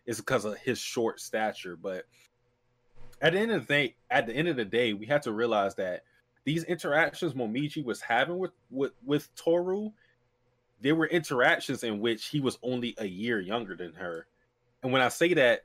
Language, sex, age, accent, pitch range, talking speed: English, male, 20-39, American, 110-130 Hz, 195 wpm